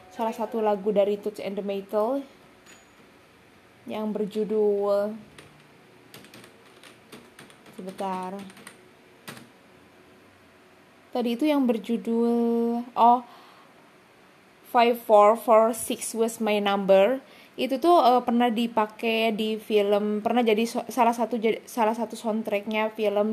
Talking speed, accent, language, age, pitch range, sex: 95 wpm, native, Indonesian, 20-39, 200-235 Hz, female